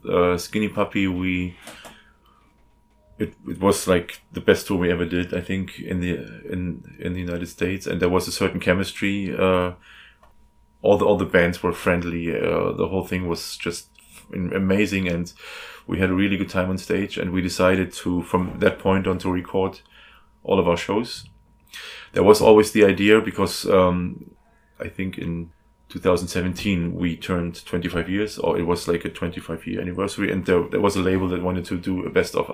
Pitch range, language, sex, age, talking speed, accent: 85-95 Hz, English, male, 20-39, 190 wpm, German